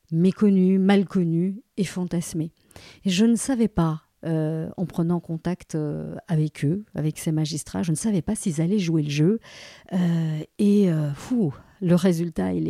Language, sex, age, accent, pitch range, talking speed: French, female, 40-59, French, 165-190 Hz, 170 wpm